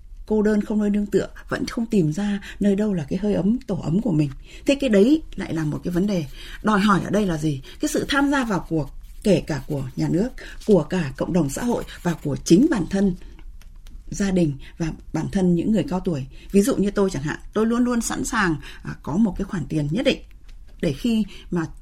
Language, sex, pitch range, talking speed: Vietnamese, female, 175-245 Hz, 240 wpm